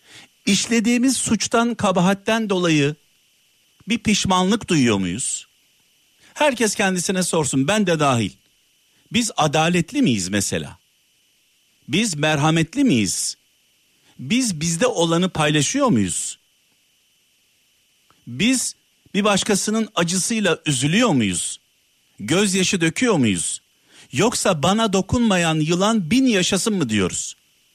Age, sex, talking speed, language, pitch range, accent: 50-69, male, 95 wpm, Turkish, 150-220 Hz, native